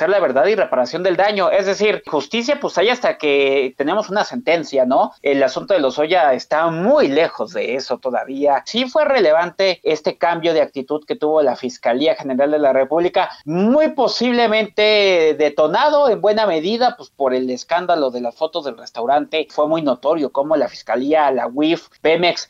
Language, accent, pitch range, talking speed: Spanish, Mexican, 140-195 Hz, 180 wpm